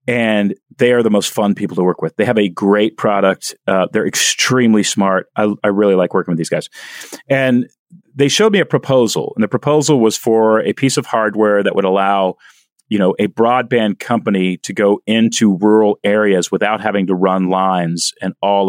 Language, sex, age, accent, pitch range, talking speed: English, male, 40-59, American, 100-125 Hz, 200 wpm